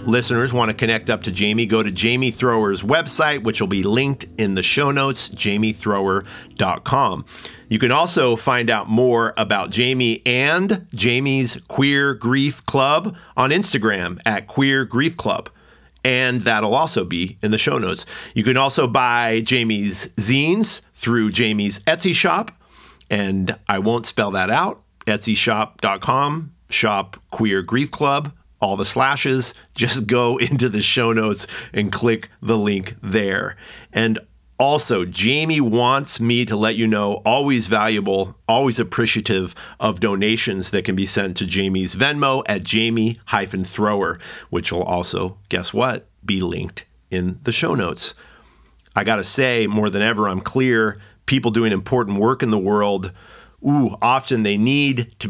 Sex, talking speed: male, 150 wpm